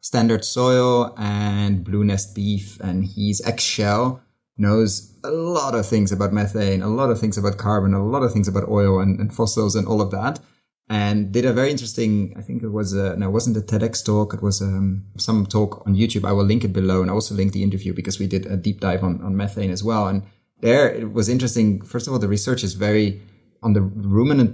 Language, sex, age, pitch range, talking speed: English, male, 30-49, 100-115 Hz, 235 wpm